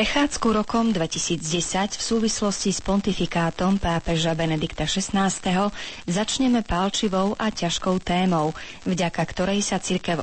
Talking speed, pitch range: 110 wpm, 165-205 Hz